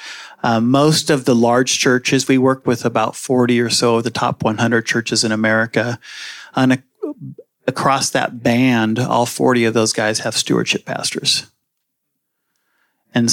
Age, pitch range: 40-59, 115-135 Hz